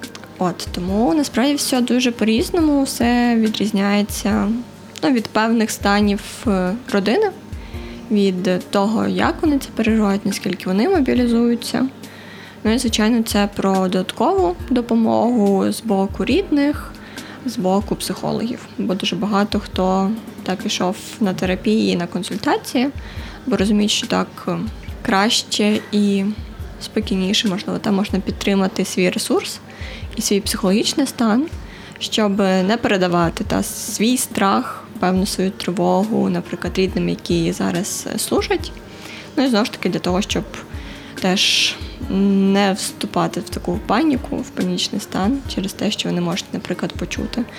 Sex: female